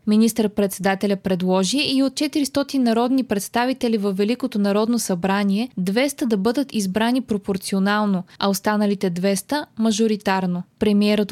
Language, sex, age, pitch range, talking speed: Bulgarian, female, 20-39, 205-255 Hz, 120 wpm